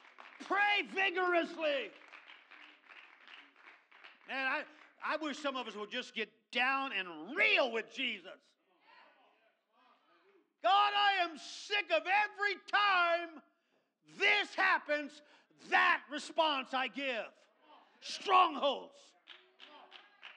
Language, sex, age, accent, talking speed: English, male, 50-69, American, 90 wpm